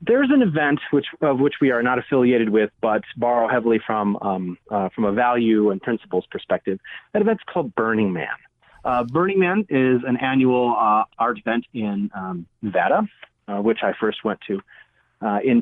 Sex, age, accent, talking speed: male, 30-49, American, 185 wpm